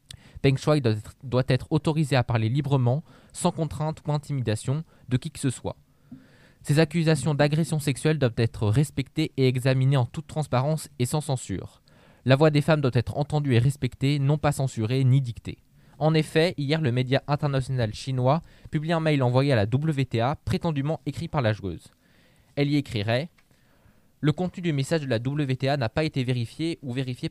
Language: French